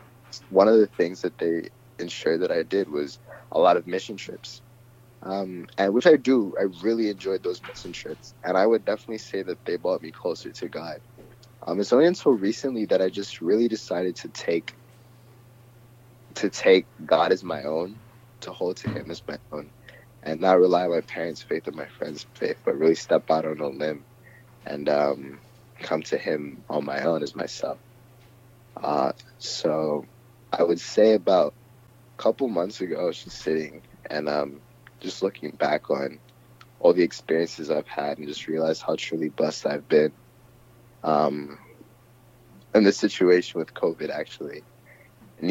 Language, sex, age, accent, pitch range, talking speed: English, male, 20-39, American, 80-120 Hz, 175 wpm